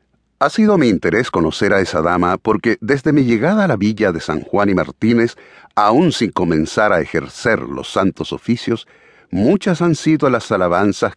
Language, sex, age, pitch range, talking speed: Spanish, male, 50-69, 90-125 Hz, 175 wpm